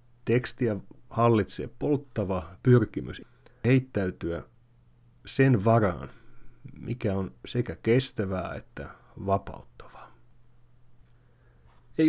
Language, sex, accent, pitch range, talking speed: Finnish, male, native, 100-120 Hz, 70 wpm